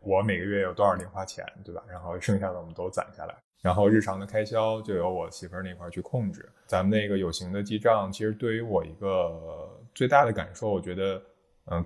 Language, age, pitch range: Chinese, 20-39, 90-110 Hz